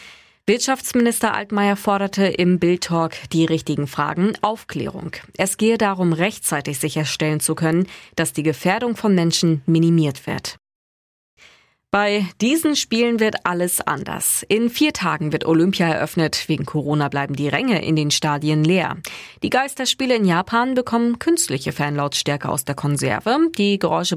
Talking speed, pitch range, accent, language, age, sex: 140 wpm, 155-210 Hz, German, German, 20-39, female